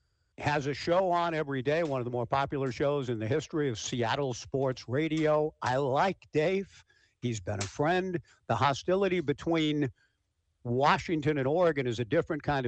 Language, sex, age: English, male, 60-79